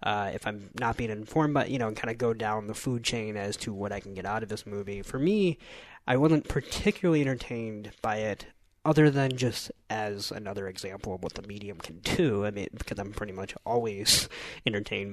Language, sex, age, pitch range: English, male, 20-39, 100-130 Hz